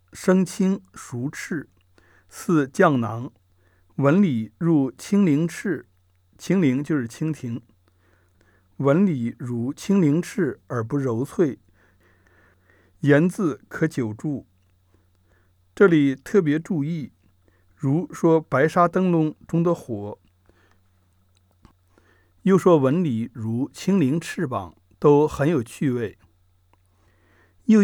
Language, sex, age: Chinese, male, 60-79